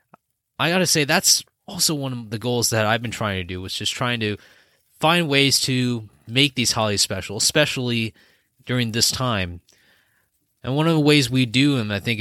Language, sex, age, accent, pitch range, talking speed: English, male, 20-39, American, 110-140 Hz, 200 wpm